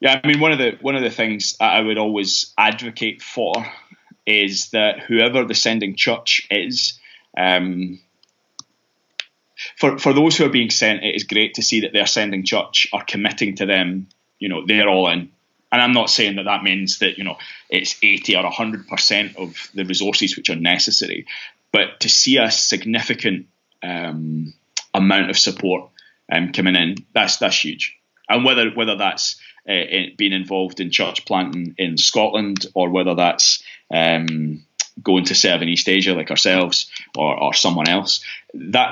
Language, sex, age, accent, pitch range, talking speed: English, male, 20-39, British, 95-115 Hz, 175 wpm